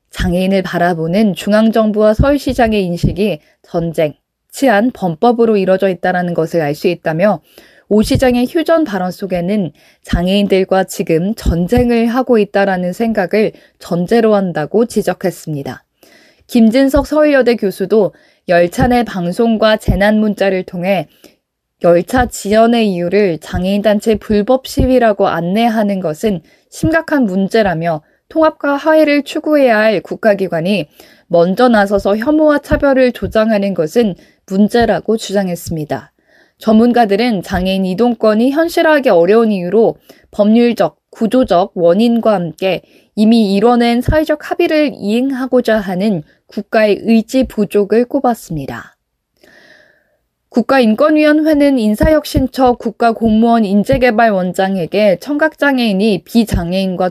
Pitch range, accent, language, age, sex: 190-245 Hz, native, Korean, 20-39, female